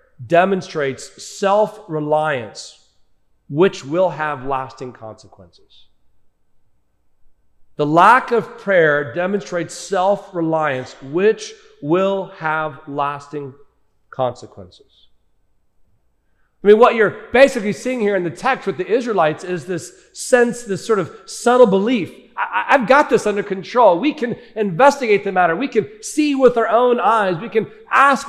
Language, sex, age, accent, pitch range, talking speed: English, male, 40-59, American, 165-245 Hz, 125 wpm